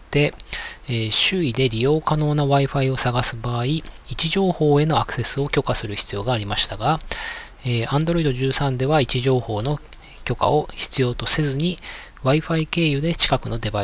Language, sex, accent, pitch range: Japanese, male, native, 110-145 Hz